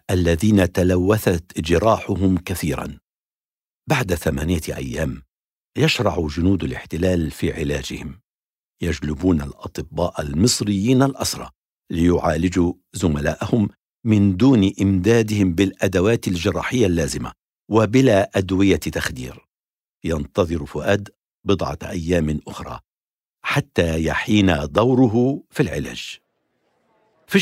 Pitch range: 85-120 Hz